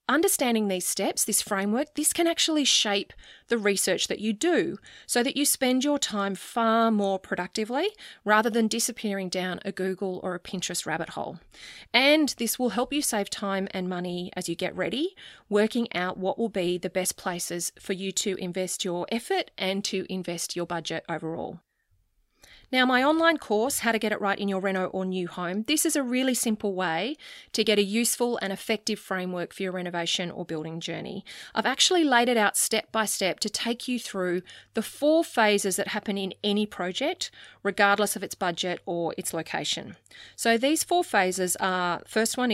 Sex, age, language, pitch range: female, 30-49, English, 185-235 Hz